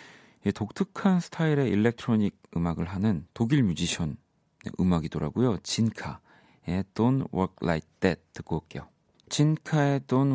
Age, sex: 40-59, male